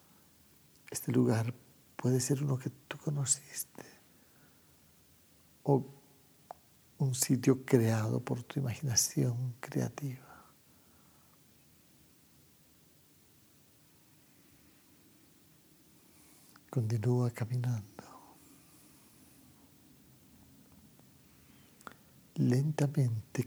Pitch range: 115-130 Hz